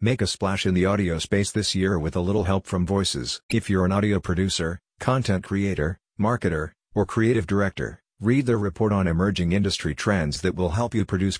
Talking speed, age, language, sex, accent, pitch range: 200 wpm, 50-69, English, male, American, 90-105 Hz